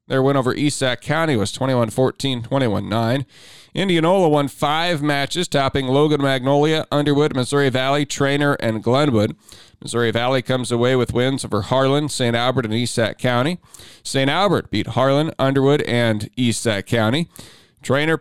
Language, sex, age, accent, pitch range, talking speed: English, male, 40-59, American, 115-145 Hz, 150 wpm